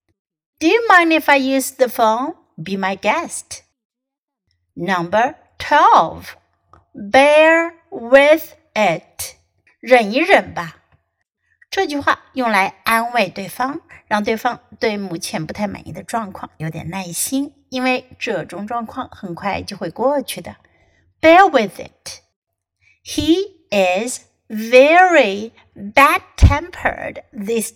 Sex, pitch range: female, 195-295 Hz